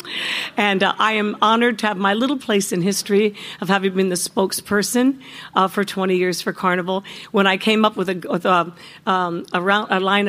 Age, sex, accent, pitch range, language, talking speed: 50-69, female, American, 175-210 Hz, English, 180 wpm